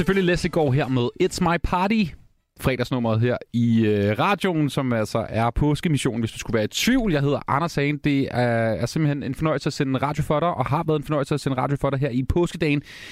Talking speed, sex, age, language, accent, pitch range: 235 wpm, male, 30-49, Danish, native, 115-155 Hz